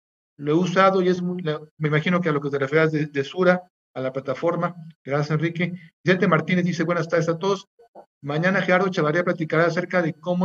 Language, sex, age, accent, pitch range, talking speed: Spanish, male, 50-69, Mexican, 155-185 Hz, 205 wpm